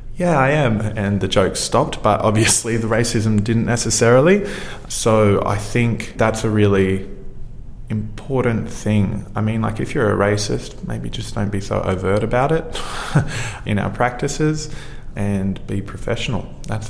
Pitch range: 95-115 Hz